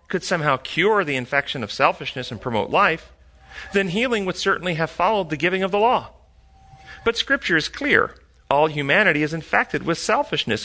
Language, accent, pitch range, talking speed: English, American, 135-195 Hz, 175 wpm